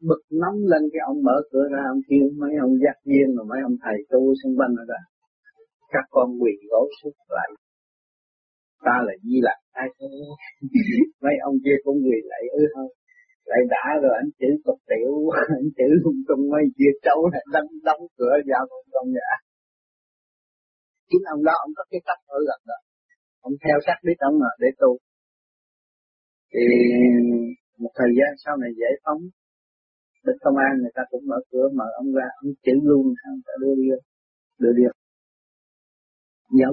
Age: 30-49